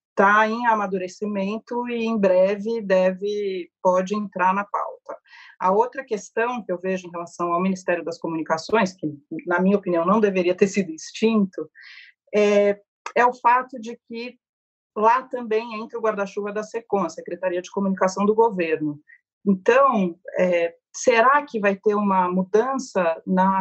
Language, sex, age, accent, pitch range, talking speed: Portuguese, female, 40-59, Brazilian, 180-225 Hz, 155 wpm